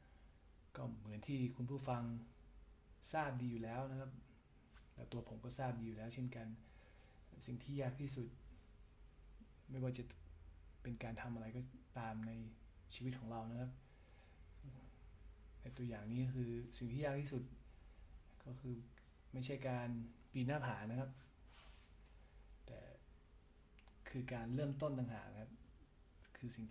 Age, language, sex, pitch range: 20-39, Thai, male, 80-125 Hz